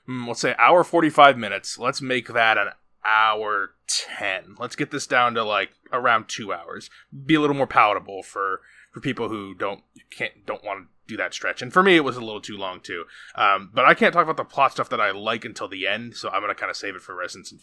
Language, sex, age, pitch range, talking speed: English, male, 20-39, 110-145 Hz, 245 wpm